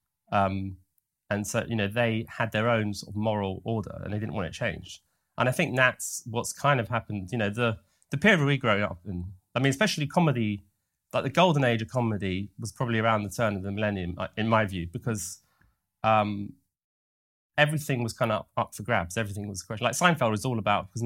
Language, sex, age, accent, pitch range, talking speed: English, male, 30-49, British, 95-120 Hz, 210 wpm